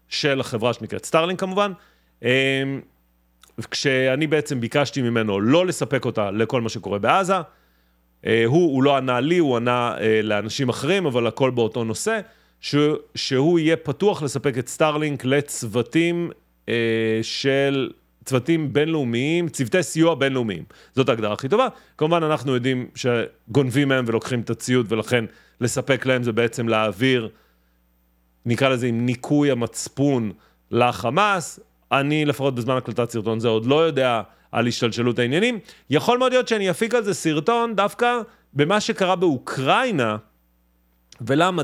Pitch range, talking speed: 115-155 Hz, 130 wpm